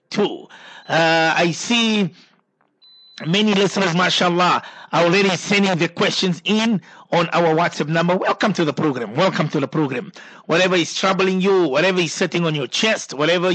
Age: 50-69